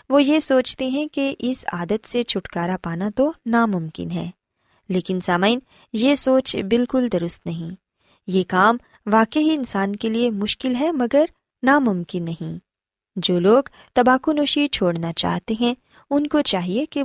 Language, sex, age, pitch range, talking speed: Urdu, female, 20-39, 180-270 Hz, 150 wpm